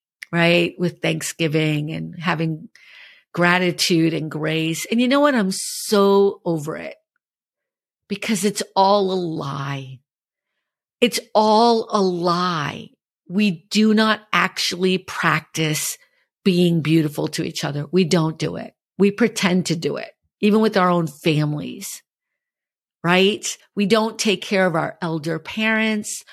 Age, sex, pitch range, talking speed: 50-69, female, 165-215 Hz, 130 wpm